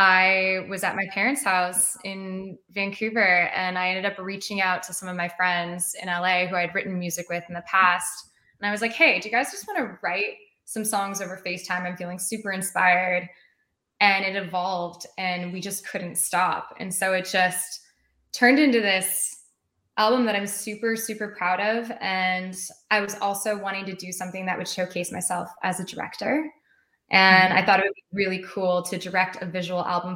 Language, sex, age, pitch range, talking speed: English, female, 10-29, 175-195 Hz, 200 wpm